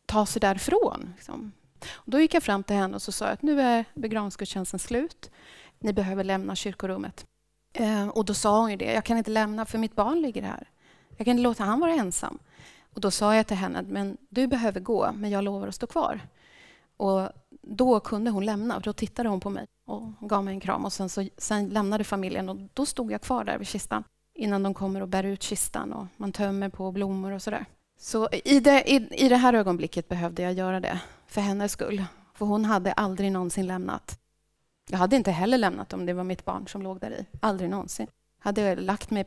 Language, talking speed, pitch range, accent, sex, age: Swedish, 215 wpm, 190-220 Hz, native, female, 30-49